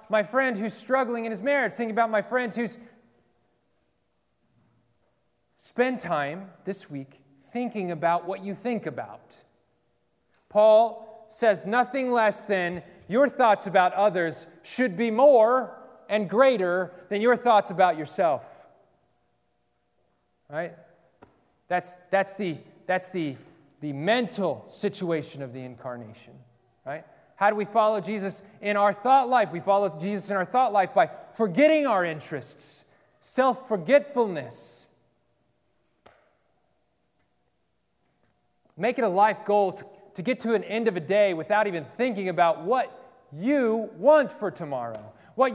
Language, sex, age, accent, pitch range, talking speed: English, male, 30-49, American, 160-230 Hz, 130 wpm